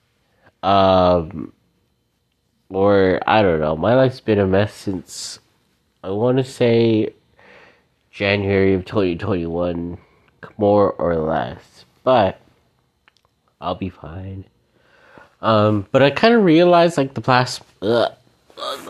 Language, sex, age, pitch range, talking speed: English, male, 30-49, 100-120 Hz, 115 wpm